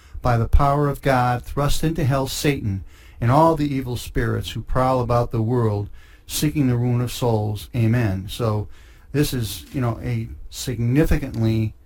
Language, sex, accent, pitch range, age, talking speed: English, male, American, 100-125 Hz, 40-59, 160 wpm